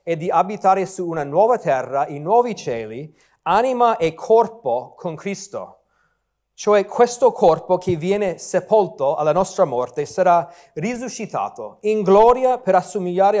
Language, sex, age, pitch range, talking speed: Italian, male, 30-49, 160-200 Hz, 135 wpm